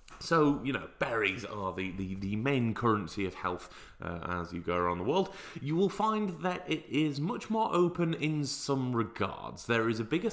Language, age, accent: English, 30-49, British